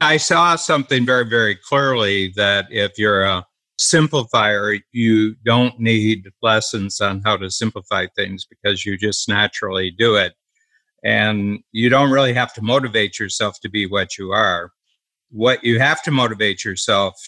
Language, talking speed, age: English, 155 wpm, 50-69